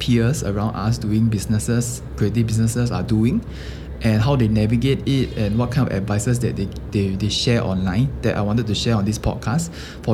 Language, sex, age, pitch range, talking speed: English, male, 20-39, 100-115 Hz, 200 wpm